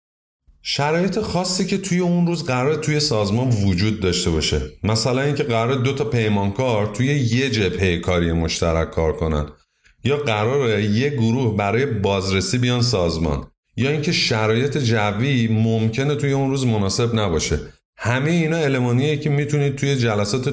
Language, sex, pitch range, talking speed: Persian, male, 95-125 Hz, 145 wpm